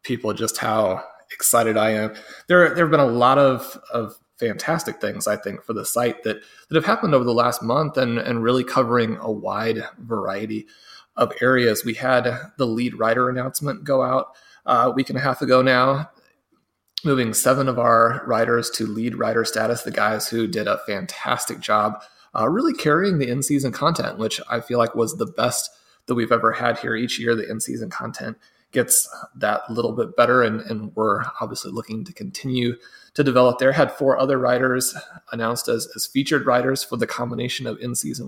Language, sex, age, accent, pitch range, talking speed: English, male, 30-49, American, 115-130 Hz, 190 wpm